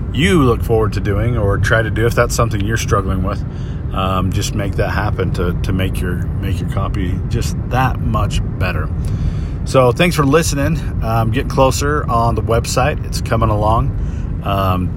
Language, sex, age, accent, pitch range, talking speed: English, male, 40-59, American, 95-115 Hz, 180 wpm